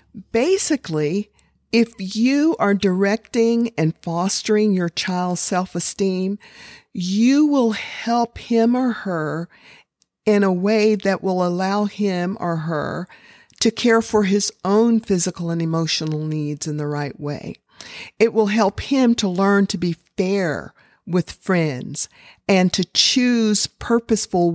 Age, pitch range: 50-69, 165-215 Hz